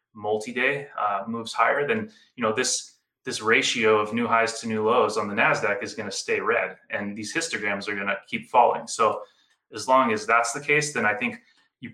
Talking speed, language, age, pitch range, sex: 215 wpm, English, 20-39, 115-140 Hz, male